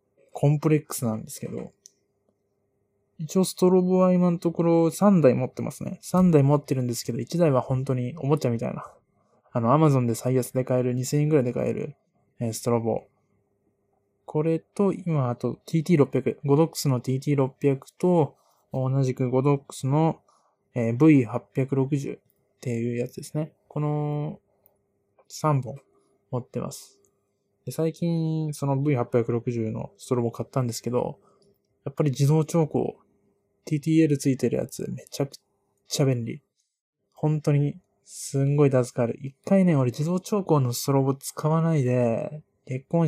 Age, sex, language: 20-39, male, Japanese